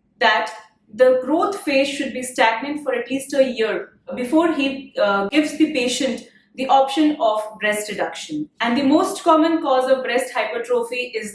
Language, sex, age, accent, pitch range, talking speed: English, female, 30-49, Indian, 195-275 Hz, 170 wpm